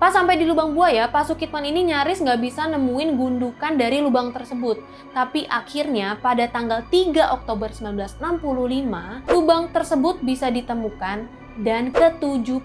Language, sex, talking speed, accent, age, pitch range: Indonesian, female, 135 wpm, native, 20-39, 225-295 Hz